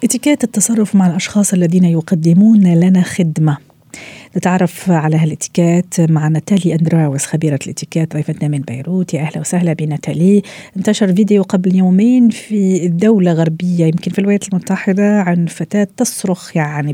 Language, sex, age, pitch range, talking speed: Arabic, female, 40-59, 160-210 Hz, 135 wpm